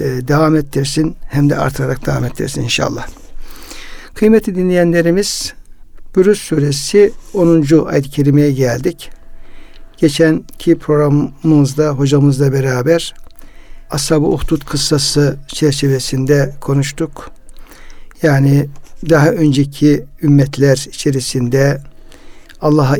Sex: male